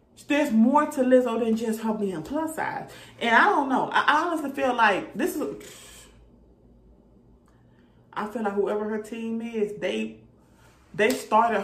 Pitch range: 180-245 Hz